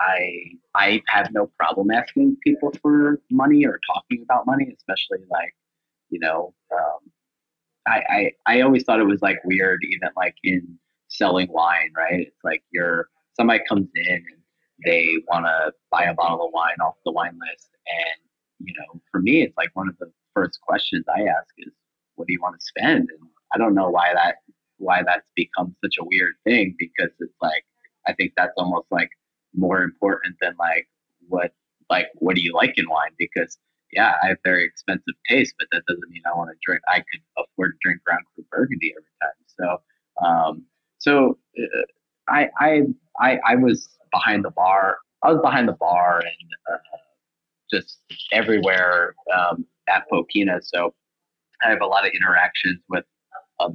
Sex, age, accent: male, 30-49, American